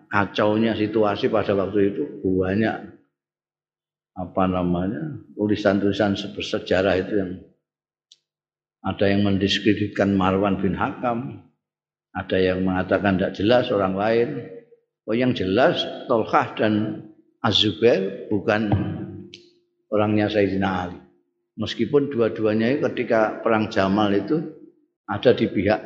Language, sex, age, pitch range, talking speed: Indonesian, male, 50-69, 95-140 Hz, 100 wpm